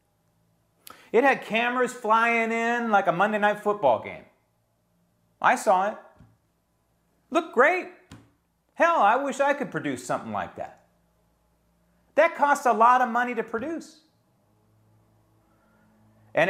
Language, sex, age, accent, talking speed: English, male, 40-59, American, 125 wpm